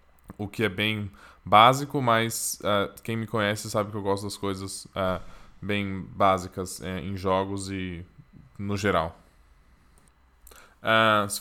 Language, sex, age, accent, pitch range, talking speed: English, male, 10-29, Brazilian, 95-110 Hz, 140 wpm